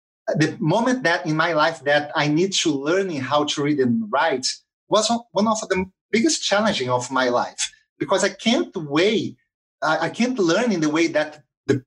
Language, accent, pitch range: English, Brazilian, 155-205 Hz